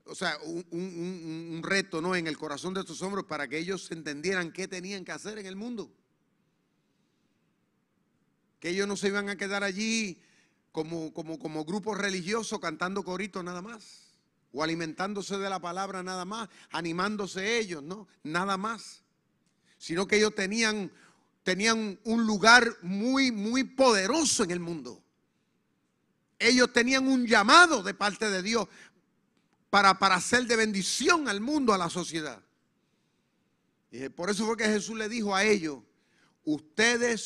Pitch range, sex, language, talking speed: 160-215 Hz, male, Spanish, 155 wpm